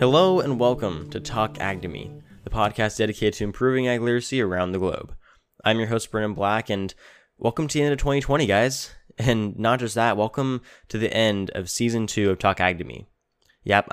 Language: English